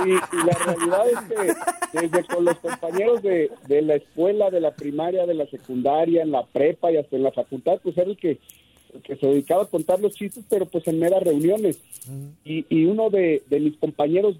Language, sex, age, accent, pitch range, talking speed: Spanish, male, 50-69, Mexican, 150-195 Hz, 215 wpm